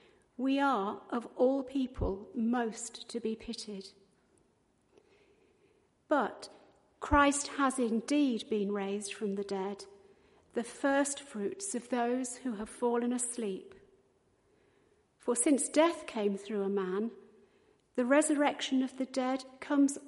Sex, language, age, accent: female, English, 50-69, British